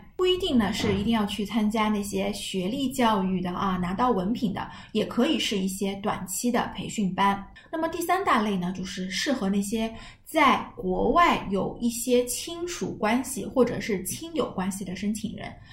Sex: female